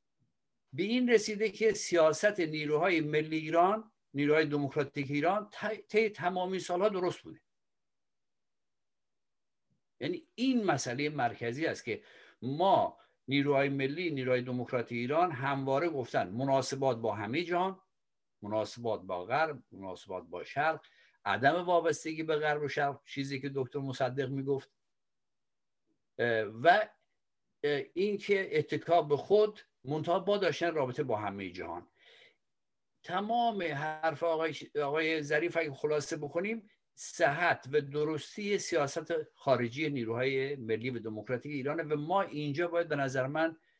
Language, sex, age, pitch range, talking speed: Persian, male, 60-79, 140-175 Hz, 120 wpm